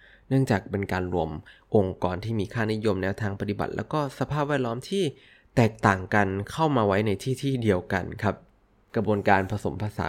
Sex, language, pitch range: male, Thai, 95-120 Hz